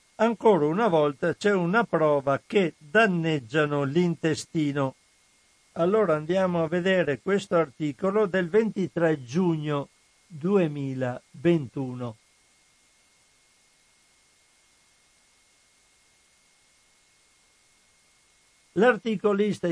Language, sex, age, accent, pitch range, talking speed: Italian, male, 60-79, native, 150-195 Hz, 60 wpm